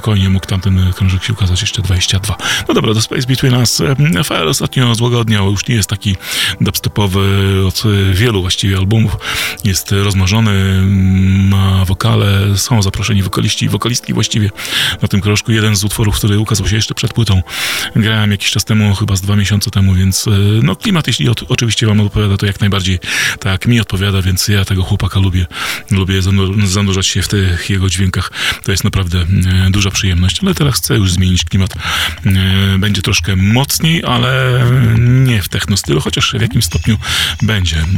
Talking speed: 165 wpm